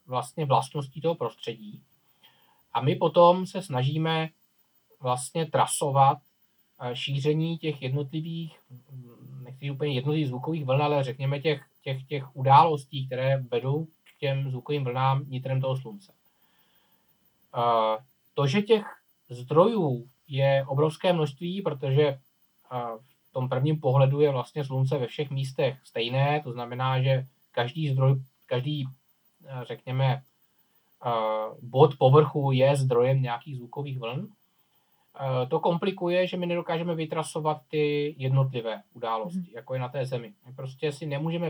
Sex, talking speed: male, 120 wpm